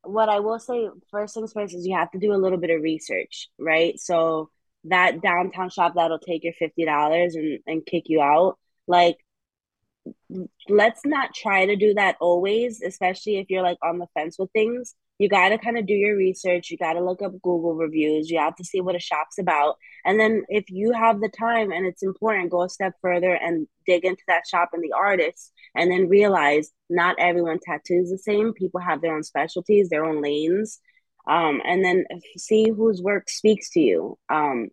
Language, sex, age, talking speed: English, female, 20-39, 205 wpm